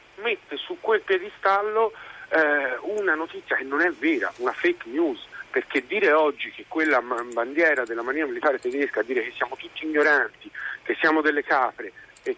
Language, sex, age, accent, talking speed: Italian, male, 50-69, native, 175 wpm